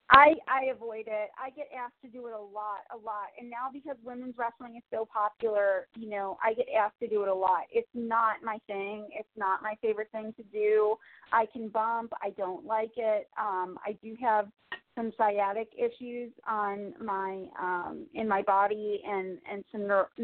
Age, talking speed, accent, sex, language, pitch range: 30-49, 200 wpm, American, female, English, 205-240 Hz